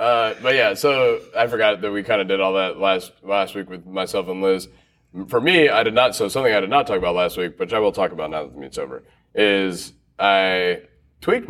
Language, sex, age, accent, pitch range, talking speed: English, male, 20-39, American, 95-135 Hz, 245 wpm